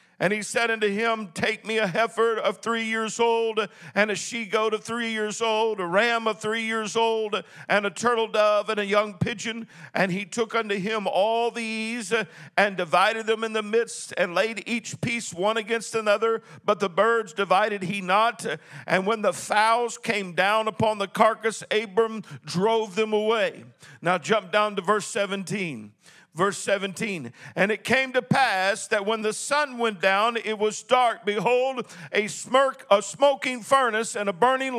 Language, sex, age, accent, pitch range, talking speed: English, male, 50-69, American, 205-240 Hz, 185 wpm